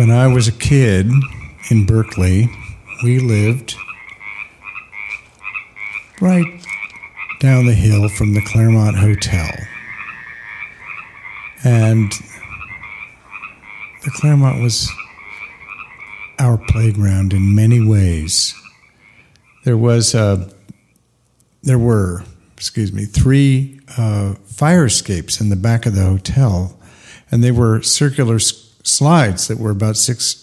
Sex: male